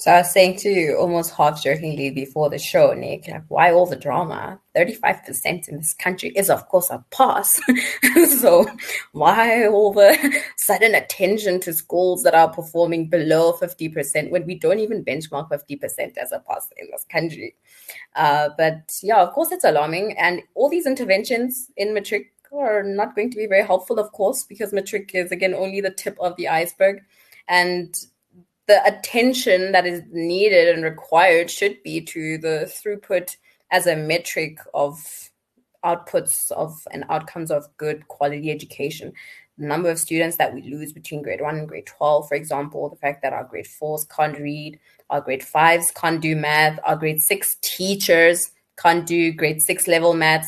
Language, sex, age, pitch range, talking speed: English, female, 20-39, 155-200 Hz, 175 wpm